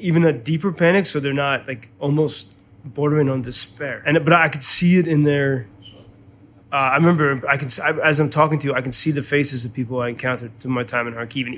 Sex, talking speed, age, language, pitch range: male, 230 wpm, 20-39, Ukrainian, 120-150 Hz